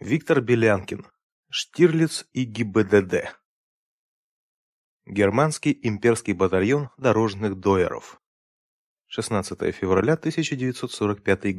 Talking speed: 65 wpm